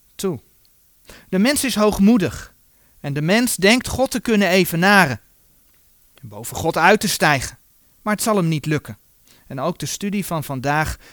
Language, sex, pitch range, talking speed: Dutch, male, 140-210 Hz, 165 wpm